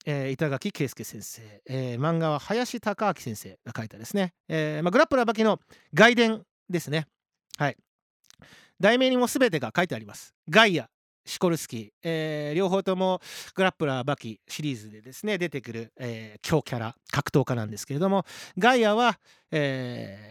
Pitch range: 120-195 Hz